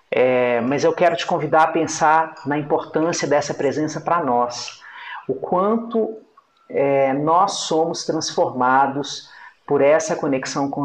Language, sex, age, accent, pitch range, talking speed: Portuguese, male, 40-59, Brazilian, 140-170 Hz, 120 wpm